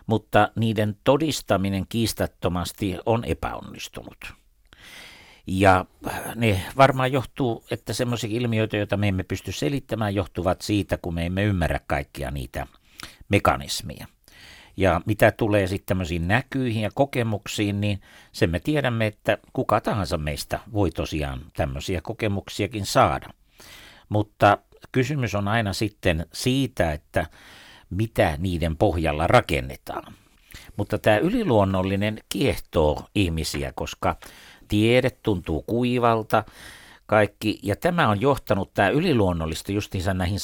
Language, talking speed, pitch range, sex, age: Finnish, 115 wpm, 90-115 Hz, male, 60-79